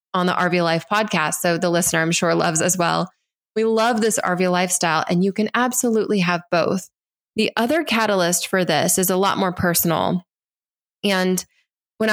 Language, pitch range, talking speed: English, 175-210 Hz, 180 wpm